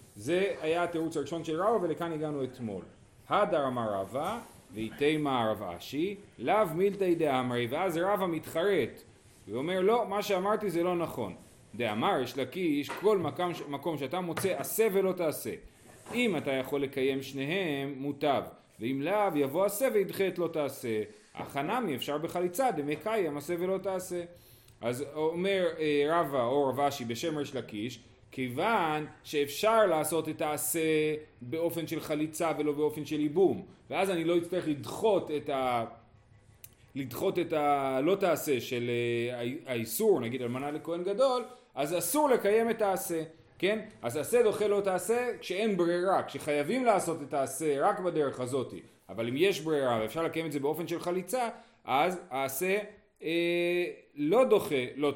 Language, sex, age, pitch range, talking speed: Hebrew, male, 30-49, 135-190 Hz, 145 wpm